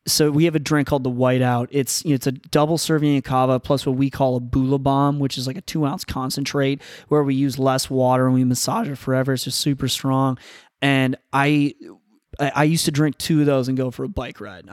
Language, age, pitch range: English, 20-39, 130-145 Hz